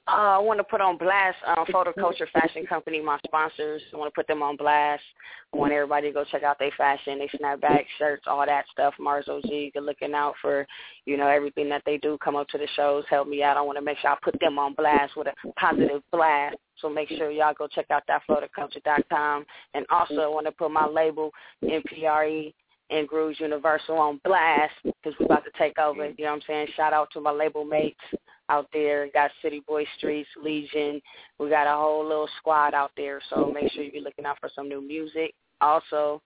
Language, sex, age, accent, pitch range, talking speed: English, female, 20-39, American, 145-155 Hz, 225 wpm